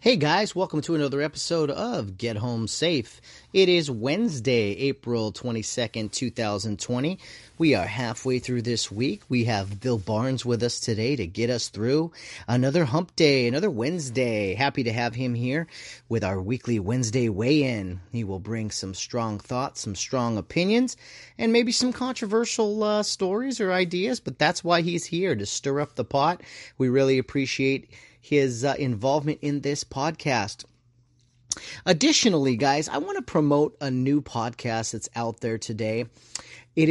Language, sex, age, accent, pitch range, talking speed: English, male, 30-49, American, 120-155 Hz, 160 wpm